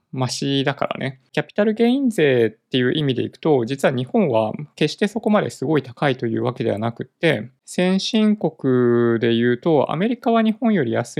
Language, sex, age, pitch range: Japanese, male, 20-39, 125-180 Hz